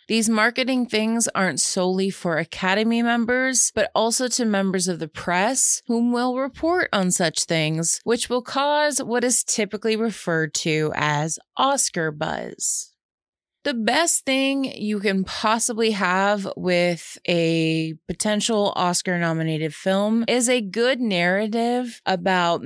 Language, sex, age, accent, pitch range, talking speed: English, female, 20-39, American, 175-235 Hz, 130 wpm